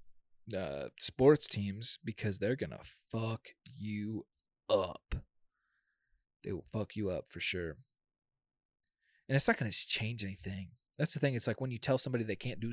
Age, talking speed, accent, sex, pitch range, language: 20-39, 160 wpm, American, male, 105-130 Hz, English